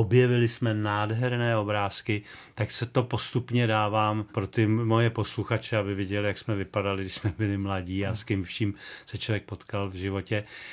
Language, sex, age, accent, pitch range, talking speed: Czech, male, 40-59, native, 105-115 Hz, 175 wpm